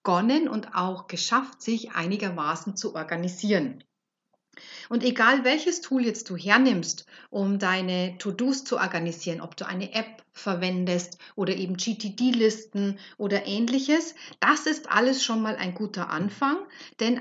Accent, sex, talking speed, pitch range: German, female, 135 wpm, 190-255 Hz